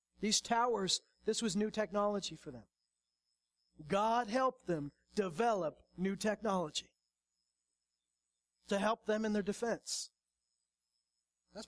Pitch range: 150-200 Hz